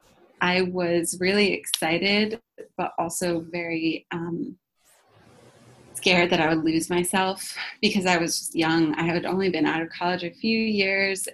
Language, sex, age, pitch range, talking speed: English, female, 20-39, 165-190 Hz, 150 wpm